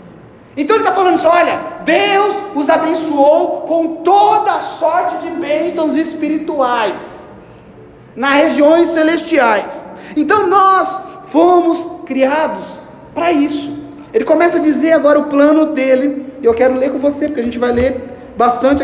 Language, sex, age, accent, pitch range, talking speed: Portuguese, male, 40-59, Brazilian, 260-315 Hz, 135 wpm